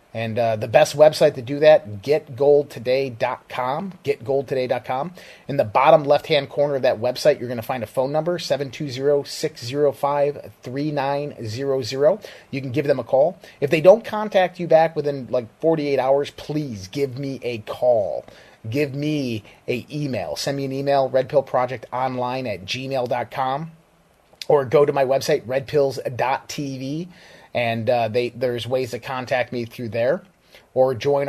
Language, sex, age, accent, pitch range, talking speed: English, male, 30-49, American, 115-145 Hz, 145 wpm